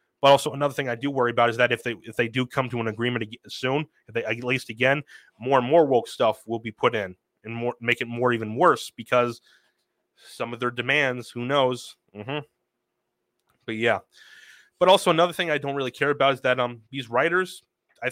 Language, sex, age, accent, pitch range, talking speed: English, male, 30-49, American, 120-145 Hz, 220 wpm